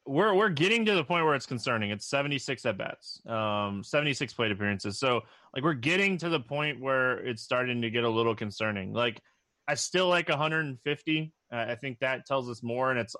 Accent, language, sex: American, English, male